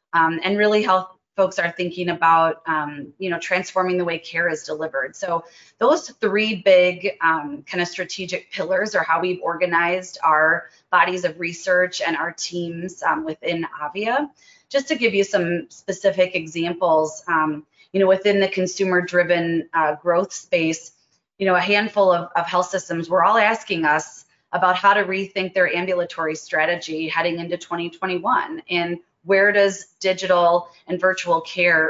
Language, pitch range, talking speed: English, 165-190 Hz, 160 wpm